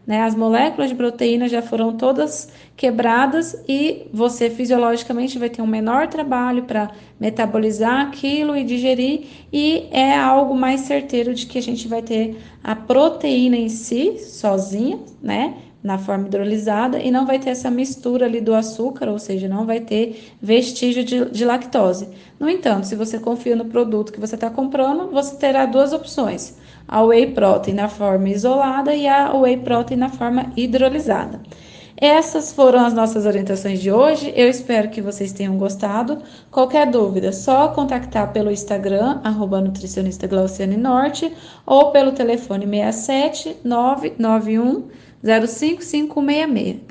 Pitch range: 220-270 Hz